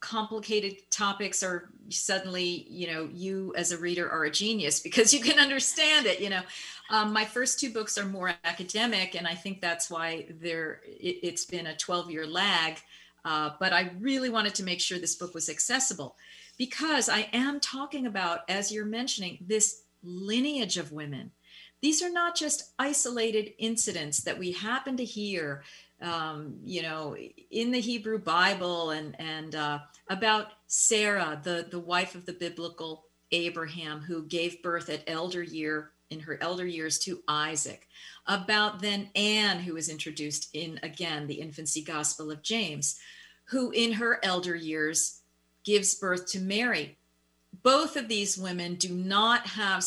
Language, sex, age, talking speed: English, female, 40-59, 160 wpm